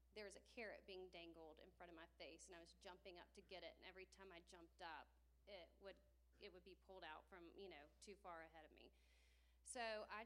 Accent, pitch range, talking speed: American, 170-200 Hz, 245 wpm